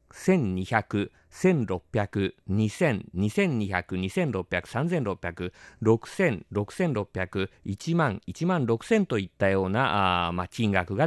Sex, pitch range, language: male, 95-150 Hz, Japanese